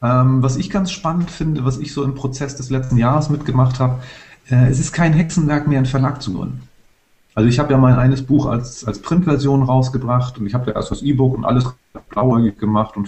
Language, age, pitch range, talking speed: English, 40-59, 110-135 Hz, 225 wpm